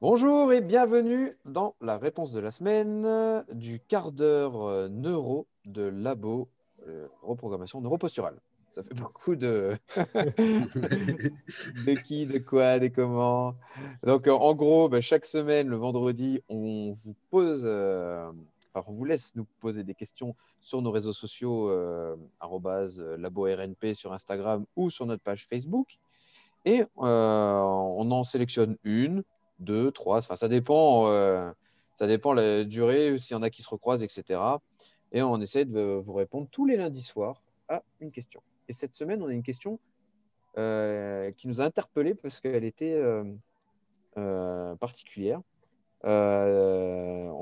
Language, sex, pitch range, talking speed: French, male, 105-160 Hz, 150 wpm